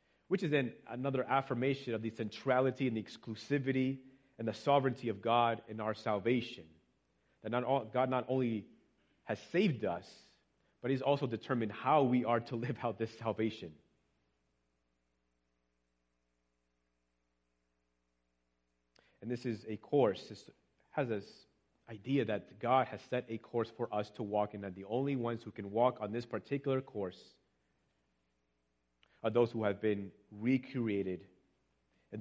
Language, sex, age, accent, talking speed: English, male, 30-49, American, 140 wpm